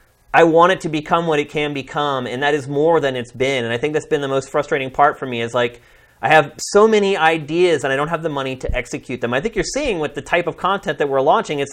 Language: English